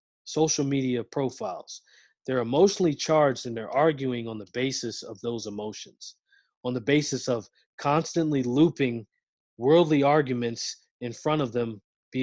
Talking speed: 135 wpm